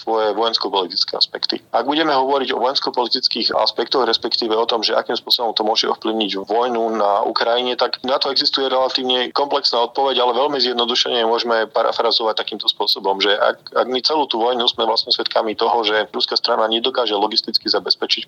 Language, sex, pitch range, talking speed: Slovak, male, 105-120 Hz, 170 wpm